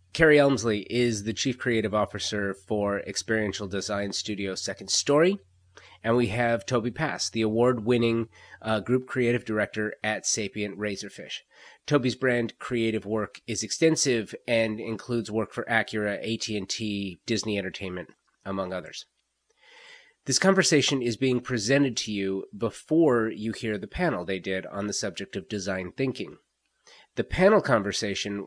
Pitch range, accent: 100-125 Hz, American